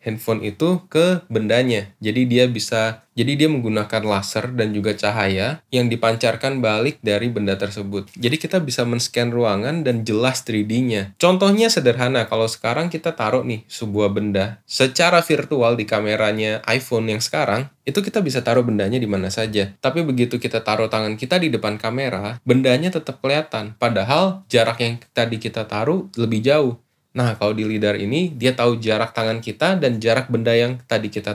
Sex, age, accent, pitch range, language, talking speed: male, 20-39, native, 110-135 Hz, Indonesian, 170 wpm